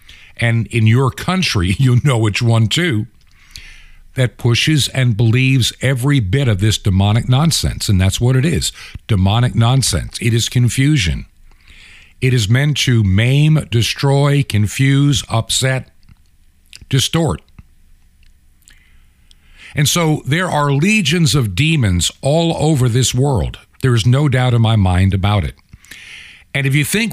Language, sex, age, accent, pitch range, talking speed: English, male, 50-69, American, 85-135 Hz, 135 wpm